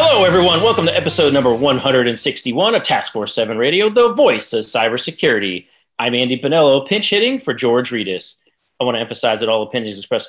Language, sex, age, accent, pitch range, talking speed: English, male, 30-49, American, 115-140 Hz, 185 wpm